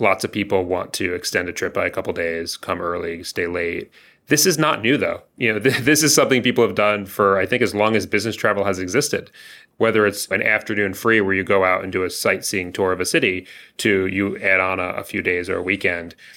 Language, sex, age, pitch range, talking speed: English, male, 30-49, 95-120 Hz, 245 wpm